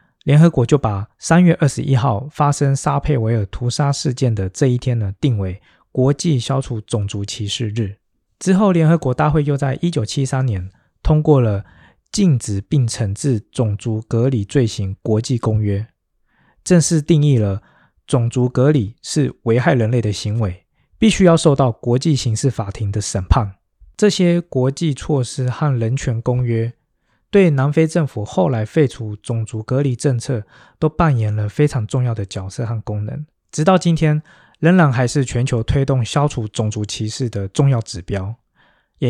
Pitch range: 110-145 Hz